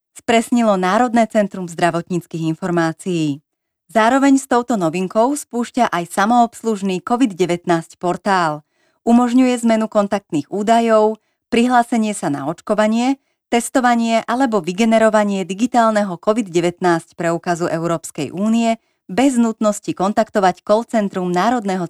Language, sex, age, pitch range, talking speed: Slovak, female, 30-49, 175-235 Hz, 100 wpm